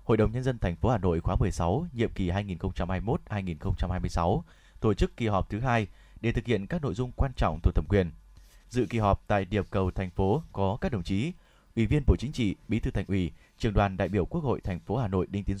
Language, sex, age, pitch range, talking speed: Vietnamese, male, 20-39, 95-120 Hz, 240 wpm